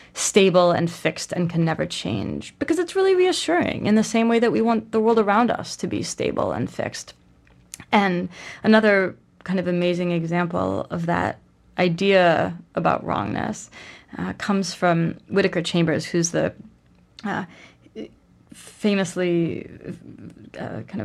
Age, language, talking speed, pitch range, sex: 20-39, English, 140 wpm, 170-205 Hz, female